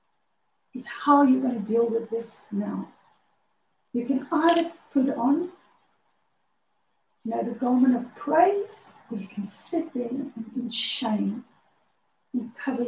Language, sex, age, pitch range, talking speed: English, female, 50-69, 230-275 Hz, 140 wpm